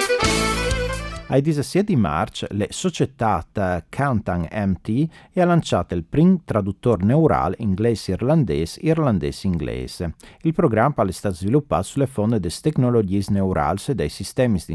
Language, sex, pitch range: Italian, male, 85-135 Hz